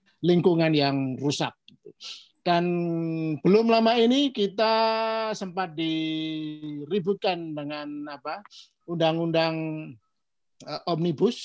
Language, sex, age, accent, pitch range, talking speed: Indonesian, male, 50-69, native, 155-200 Hz, 75 wpm